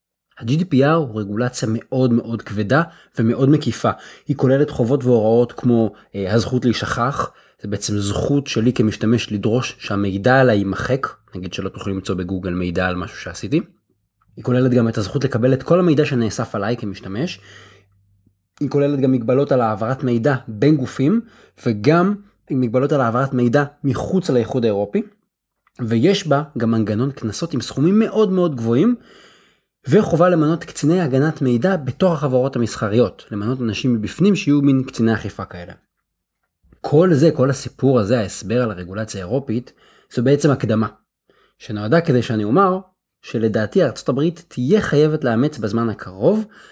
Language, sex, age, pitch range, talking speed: Hebrew, male, 20-39, 110-145 Hz, 145 wpm